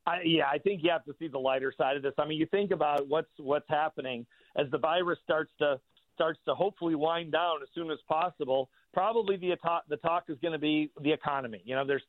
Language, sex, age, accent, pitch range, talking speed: English, male, 50-69, American, 150-190 Hz, 240 wpm